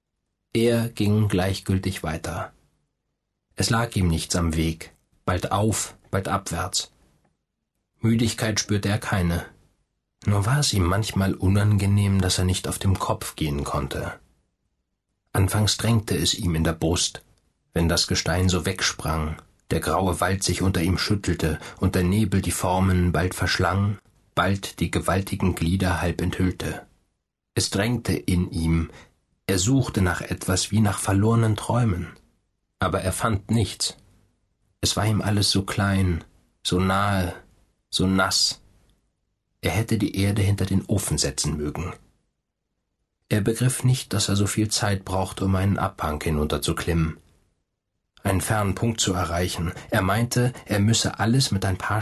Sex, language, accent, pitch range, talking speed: male, German, German, 90-105 Hz, 145 wpm